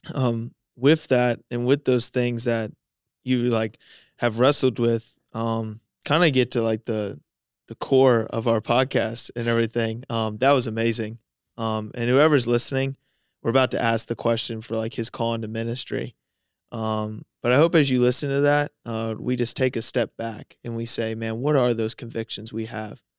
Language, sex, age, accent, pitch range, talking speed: English, male, 20-39, American, 115-130 Hz, 190 wpm